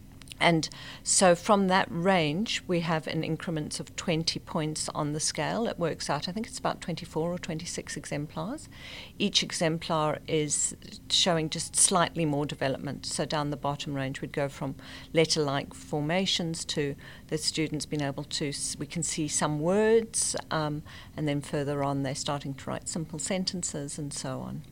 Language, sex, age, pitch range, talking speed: English, female, 50-69, 150-180 Hz, 175 wpm